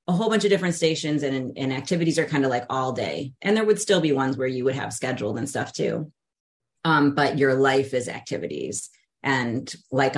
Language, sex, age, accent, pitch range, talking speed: English, female, 30-49, American, 130-160 Hz, 220 wpm